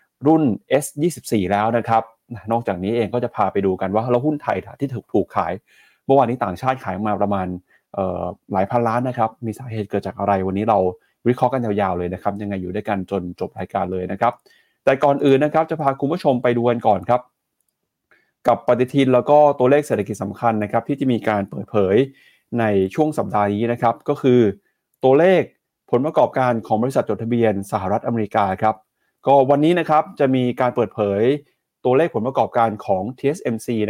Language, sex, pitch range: Thai, male, 105-130 Hz